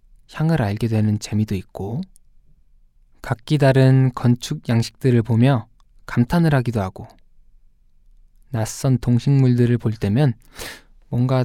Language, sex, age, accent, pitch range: Korean, male, 20-39, native, 110-140 Hz